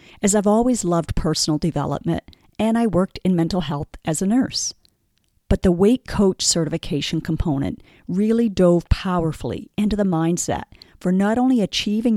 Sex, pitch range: female, 155-200 Hz